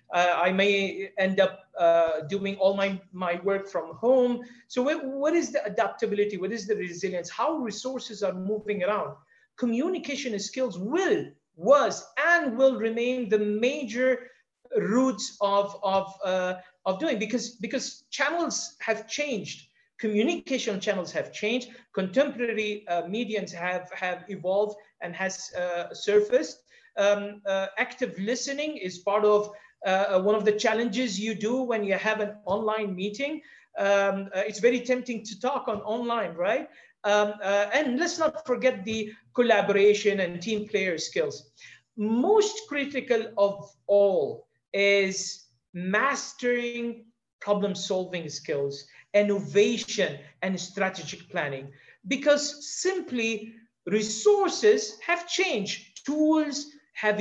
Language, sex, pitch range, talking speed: English, male, 195-255 Hz, 130 wpm